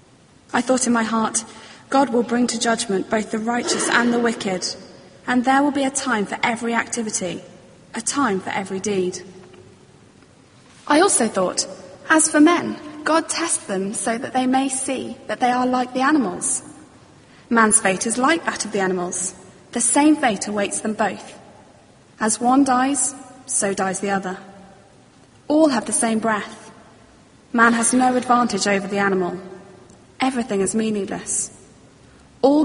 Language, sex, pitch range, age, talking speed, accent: English, female, 200-255 Hz, 20-39, 160 wpm, British